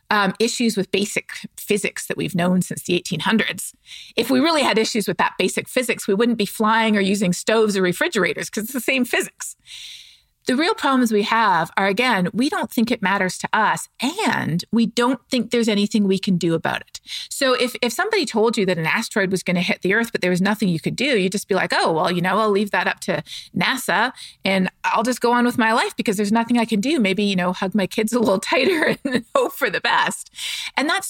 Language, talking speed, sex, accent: English, 240 wpm, female, American